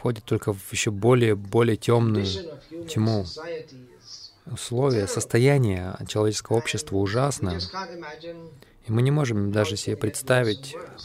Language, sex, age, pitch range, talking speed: Russian, male, 20-39, 105-130 Hz, 105 wpm